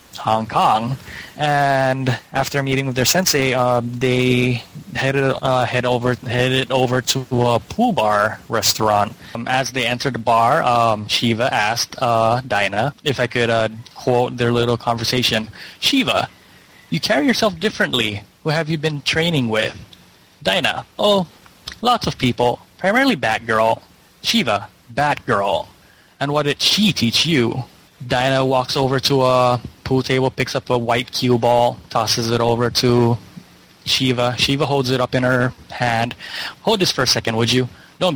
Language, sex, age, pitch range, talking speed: English, male, 20-39, 115-135 Hz, 150 wpm